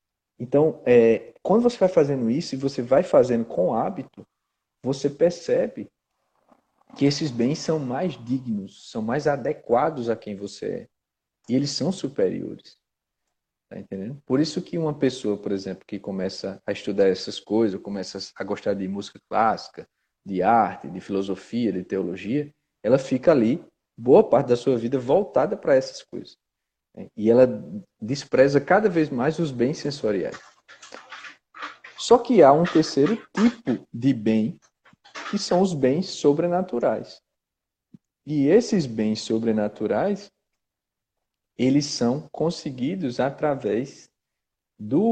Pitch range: 110-160 Hz